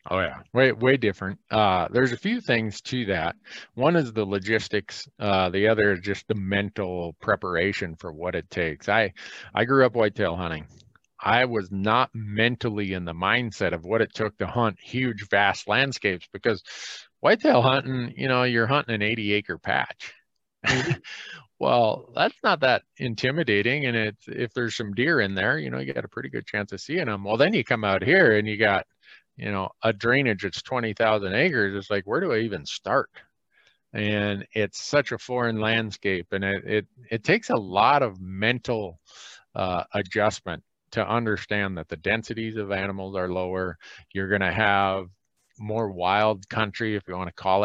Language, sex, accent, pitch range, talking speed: English, male, American, 95-120 Hz, 185 wpm